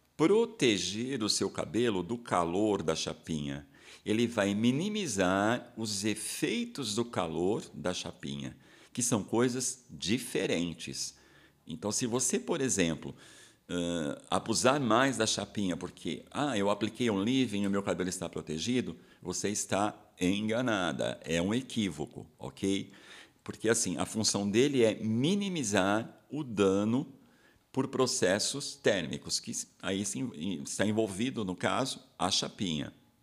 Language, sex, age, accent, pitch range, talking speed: Portuguese, male, 50-69, Brazilian, 90-130 Hz, 125 wpm